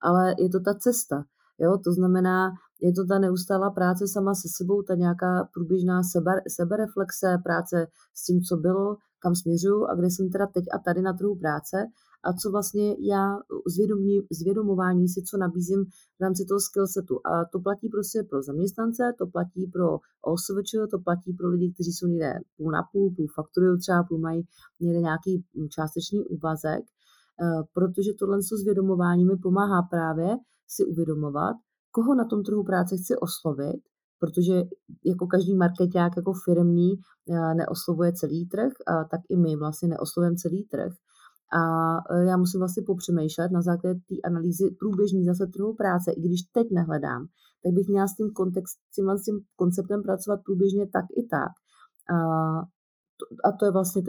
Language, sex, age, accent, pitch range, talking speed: Czech, female, 30-49, native, 175-195 Hz, 160 wpm